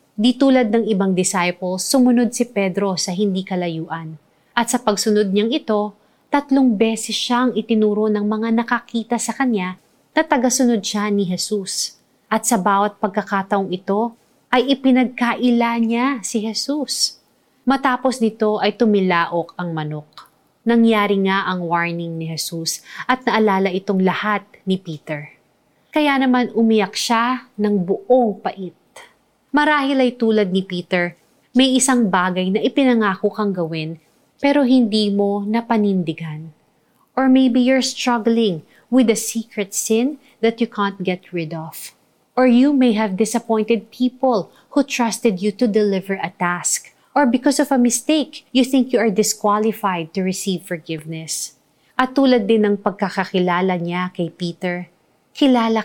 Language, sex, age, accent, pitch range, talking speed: Filipino, female, 30-49, native, 185-245 Hz, 140 wpm